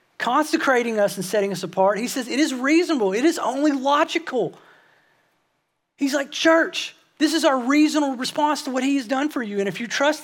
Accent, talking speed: American, 200 wpm